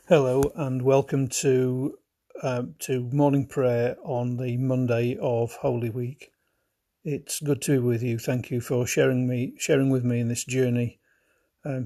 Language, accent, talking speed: English, British, 160 wpm